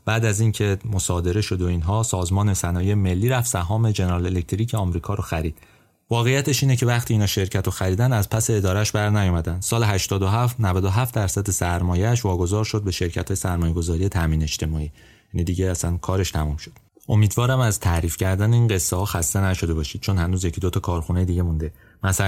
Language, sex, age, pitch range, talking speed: Persian, male, 30-49, 90-115 Hz, 180 wpm